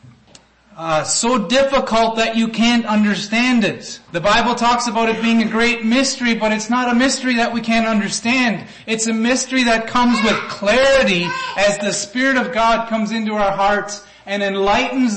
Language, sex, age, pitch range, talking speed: English, male, 30-49, 160-225 Hz, 190 wpm